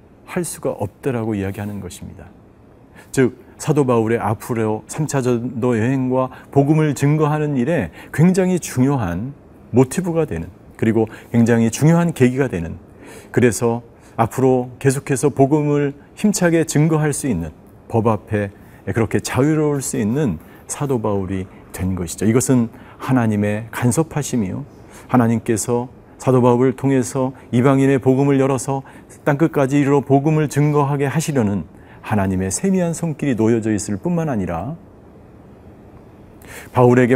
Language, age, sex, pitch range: Korean, 40-59, male, 105-145 Hz